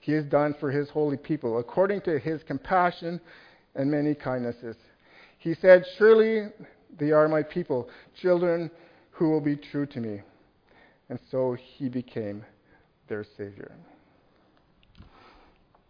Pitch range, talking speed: 130-155 Hz, 130 wpm